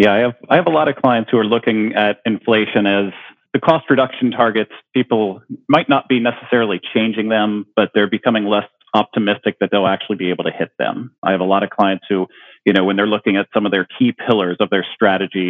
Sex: male